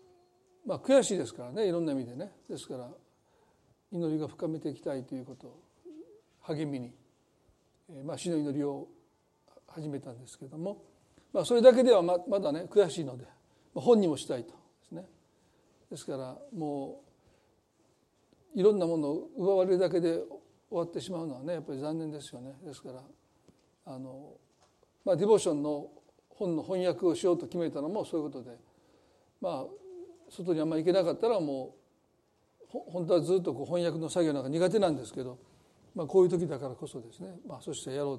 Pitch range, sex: 145-215 Hz, male